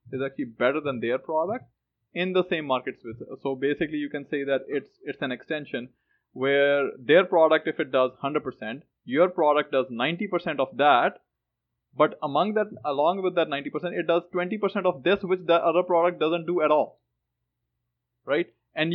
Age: 20-39